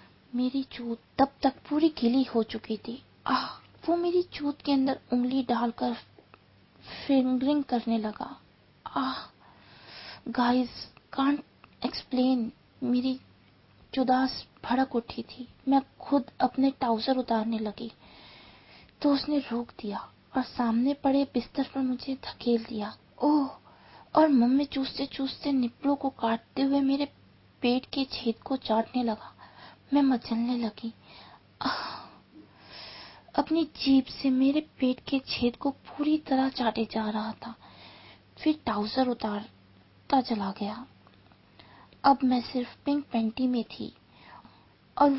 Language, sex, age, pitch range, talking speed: Hindi, female, 20-39, 230-275 Hz, 110 wpm